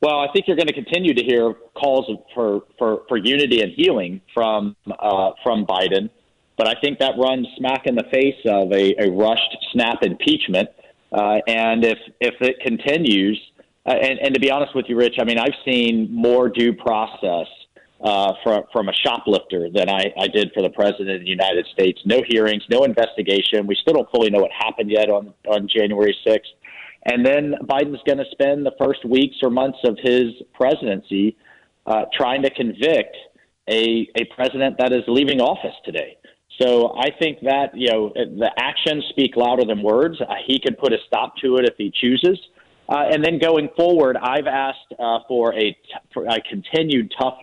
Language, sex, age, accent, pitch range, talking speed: English, male, 40-59, American, 105-135 Hz, 195 wpm